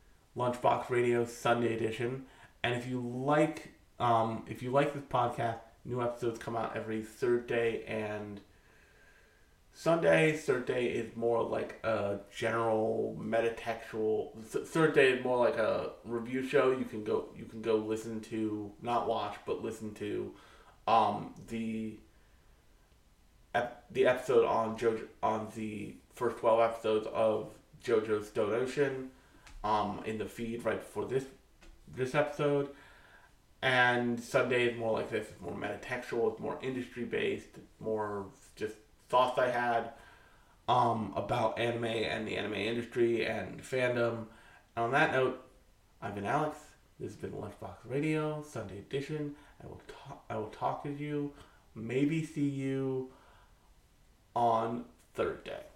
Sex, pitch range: male, 110-130 Hz